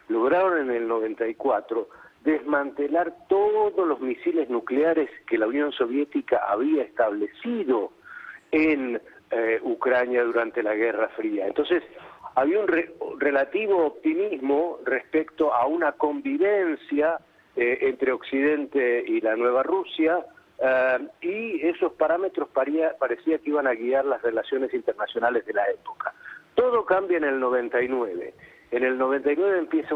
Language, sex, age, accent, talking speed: Spanish, male, 50-69, Argentinian, 125 wpm